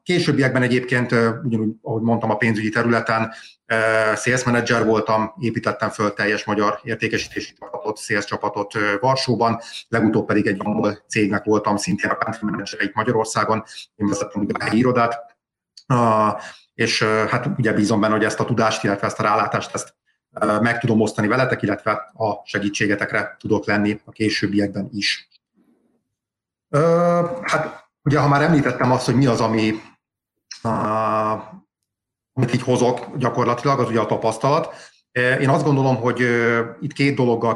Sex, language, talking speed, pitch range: male, Hungarian, 145 wpm, 105-125 Hz